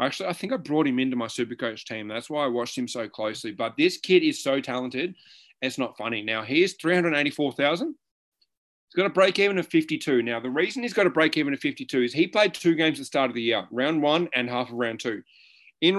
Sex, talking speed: male, 250 wpm